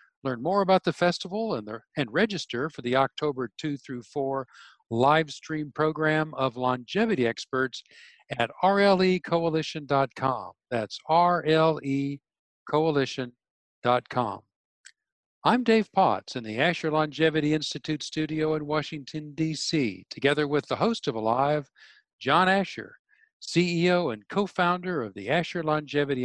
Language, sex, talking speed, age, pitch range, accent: English, male, 115 wpm, 50-69, 135-180 Hz, American